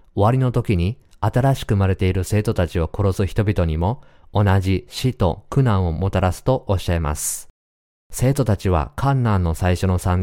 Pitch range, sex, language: 85-110 Hz, male, Japanese